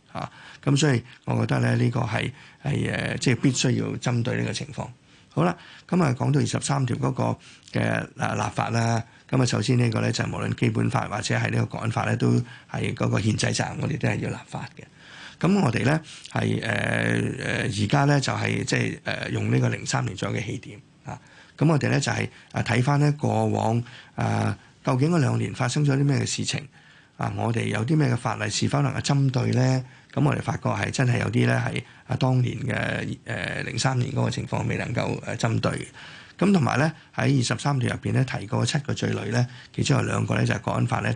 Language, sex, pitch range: Chinese, male, 115-135 Hz